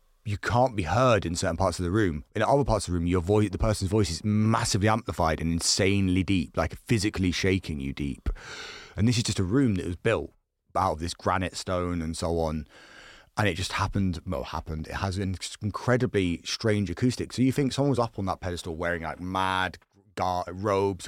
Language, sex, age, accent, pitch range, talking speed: English, male, 30-49, British, 85-105 Hz, 215 wpm